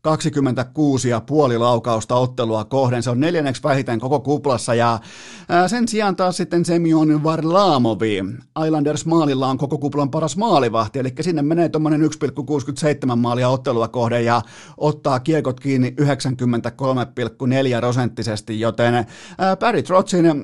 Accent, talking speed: native, 115 wpm